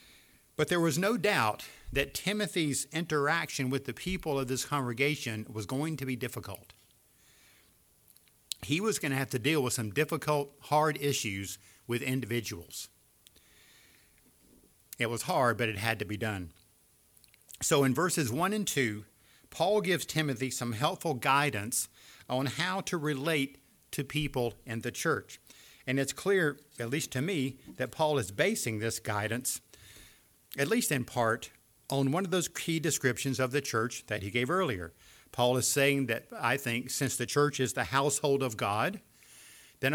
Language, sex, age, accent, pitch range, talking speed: English, male, 50-69, American, 115-150 Hz, 160 wpm